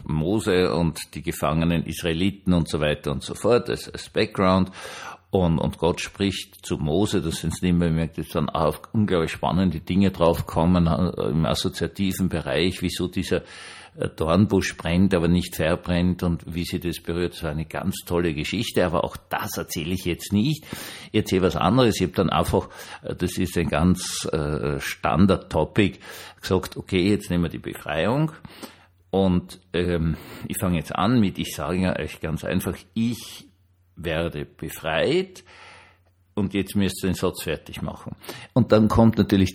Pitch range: 80-95 Hz